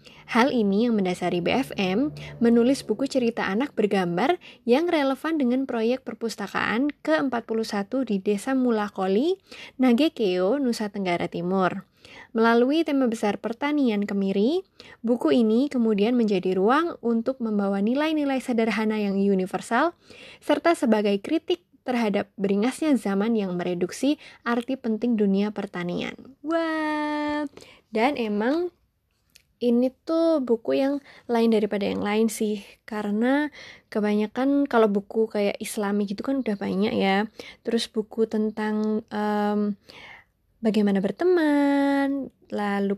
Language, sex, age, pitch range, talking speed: Indonesian, female, 20-39, 205-270 Hz, 115 wpm